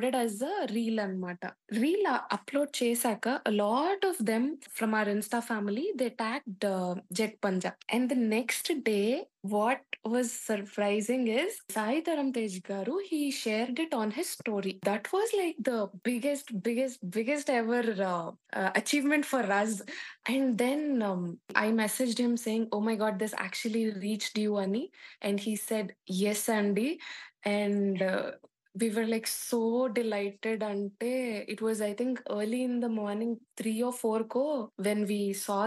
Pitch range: 205-245 Hz